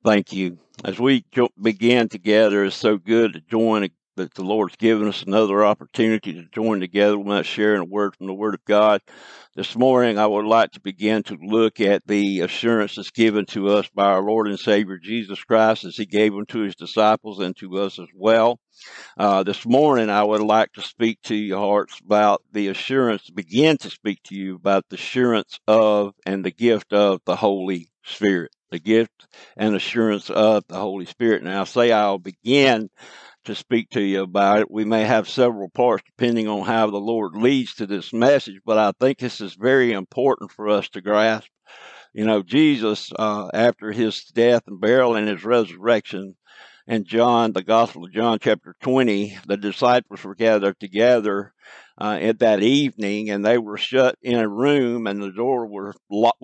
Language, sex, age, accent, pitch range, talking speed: English, male, 60-79, American, 100-115 Hz, 190 wpm